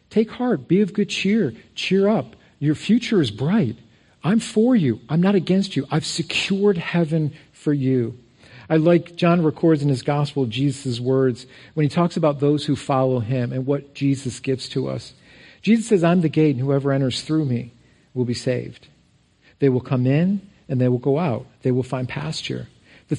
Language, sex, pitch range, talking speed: English, male, 130-175 Hz, 190 wpm